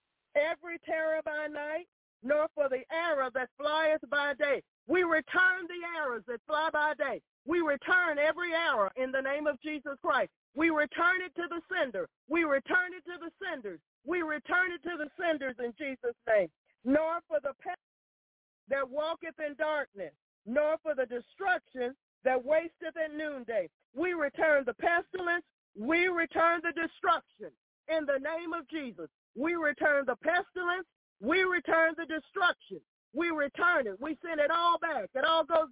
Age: 40-59